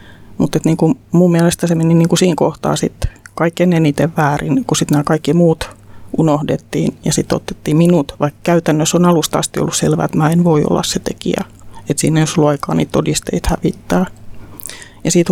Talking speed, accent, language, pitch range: 185 wpm, native, Finnish, 145-170 Hz